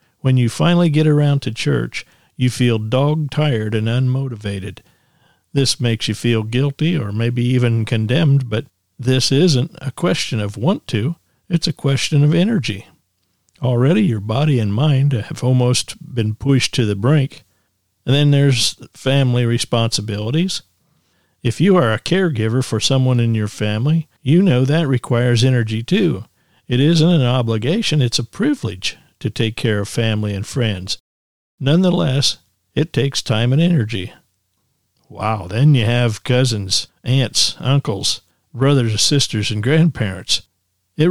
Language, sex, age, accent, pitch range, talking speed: English, male, 50-69, American, 110-150 Hz, 145 wpm